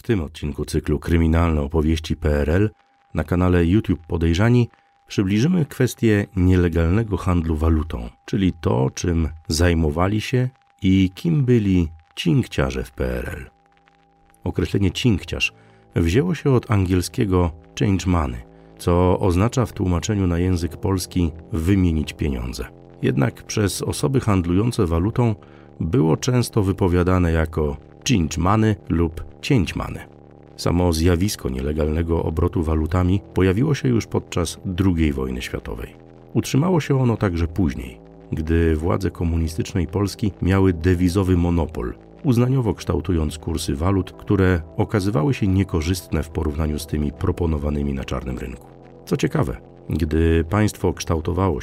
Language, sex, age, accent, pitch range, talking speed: Polish, male, 40-59, native, 80-105 Hz, 120 wpm